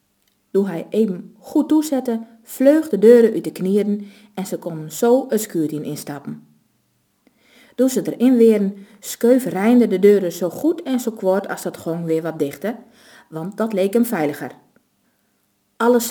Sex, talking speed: female, 155 wpm